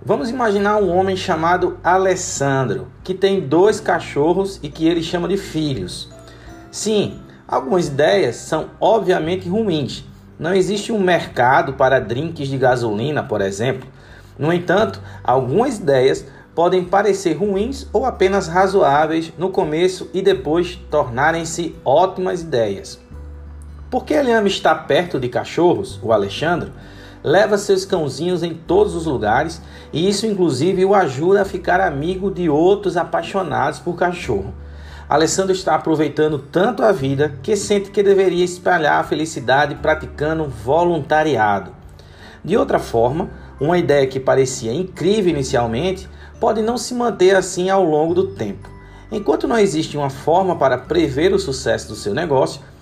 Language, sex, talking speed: Portuguese, male, 140 wpm